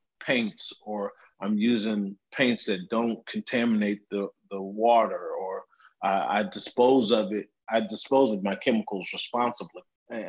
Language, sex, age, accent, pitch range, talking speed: English, male, 30-49, American, 105-125 Hz, 140 wpm